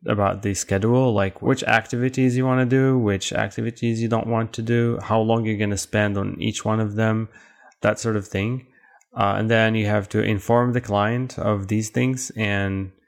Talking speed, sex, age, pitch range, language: 205 wpm, male, 20-39, 100-120 Hz, English